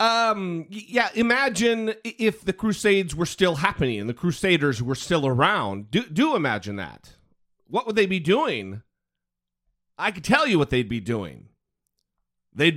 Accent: American